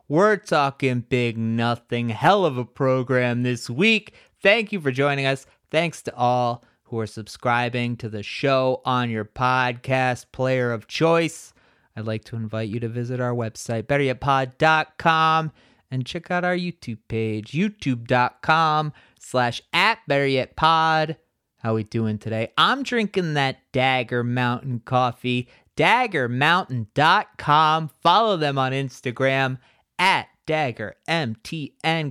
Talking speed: 125 wpm